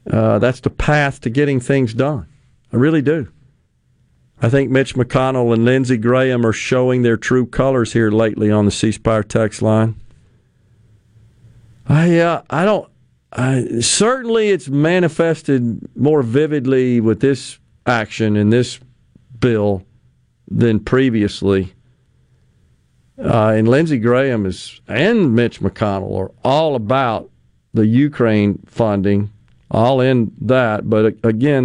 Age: 50-69